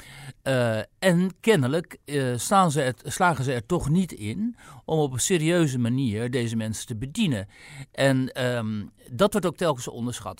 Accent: Dutch